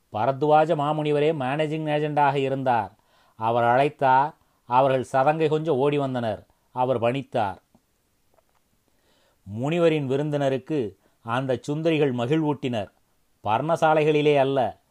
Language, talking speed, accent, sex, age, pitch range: Tamil, 80 wpm, native, male, 30-49, 125-150 Hz